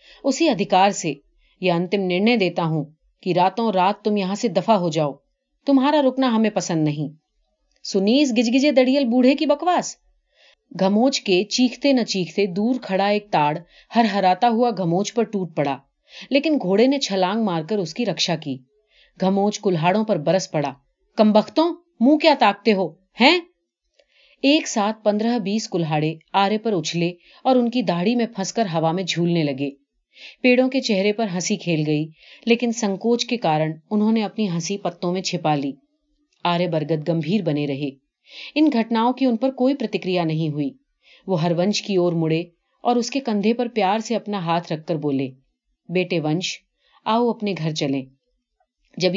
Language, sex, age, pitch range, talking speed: Urdu, female, 30-49, 170-240 Hz, 160 wpm